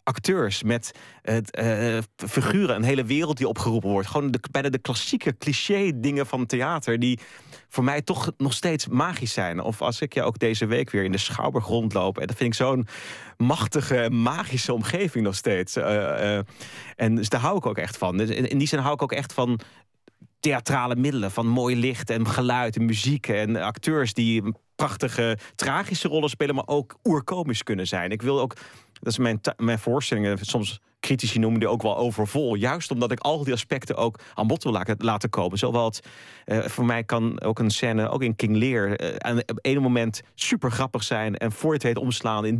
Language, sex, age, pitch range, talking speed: Dutch, male, 30-49, 110-135 Hz, 200 wpm